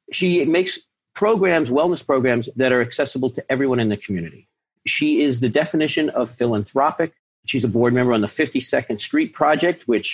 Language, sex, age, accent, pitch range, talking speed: English, male, 50-69, American, 115-155 Hz, 170 wpm